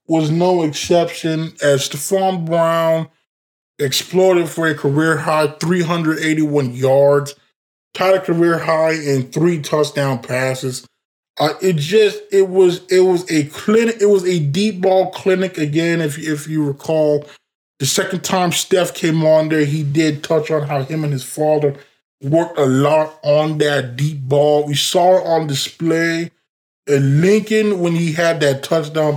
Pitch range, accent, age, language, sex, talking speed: 145-180 Hz, American, 20-39, English, male, 155 wpm